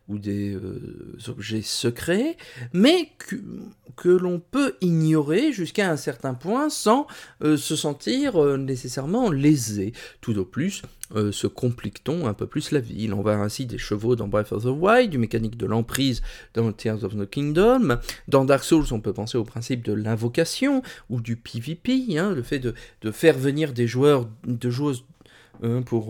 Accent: French